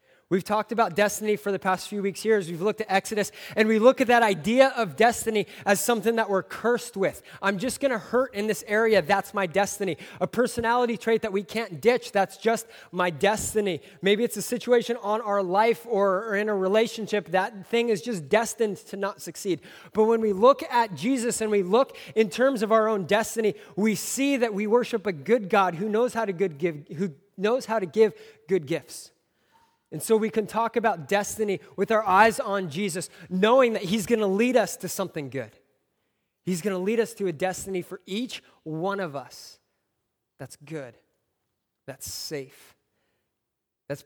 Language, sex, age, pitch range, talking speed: English, male, 30-49, 165-220 Hz, 200 wpm